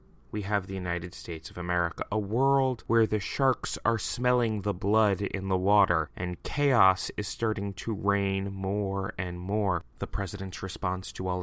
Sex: male